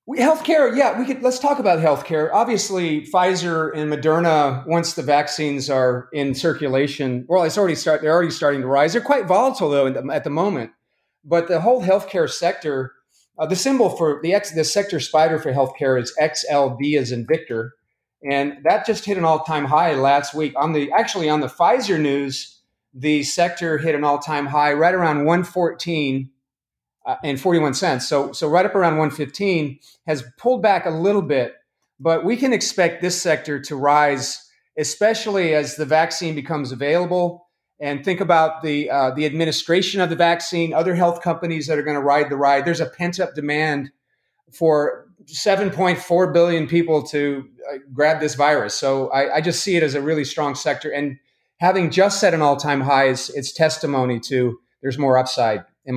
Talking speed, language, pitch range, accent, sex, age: 185 wpm, English, 140-175 Hz, American, male, 40-59